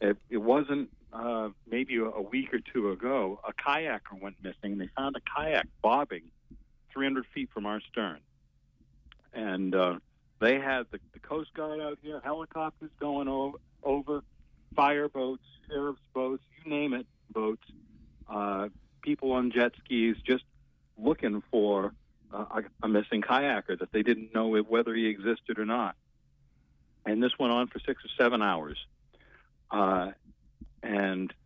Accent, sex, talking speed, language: American, male, 145 wpm, English